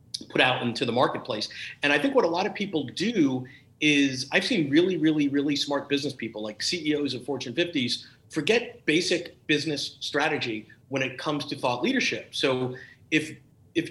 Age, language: 50-69, English